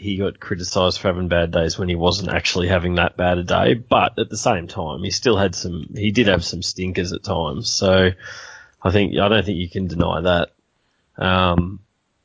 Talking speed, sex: 210 wpm, male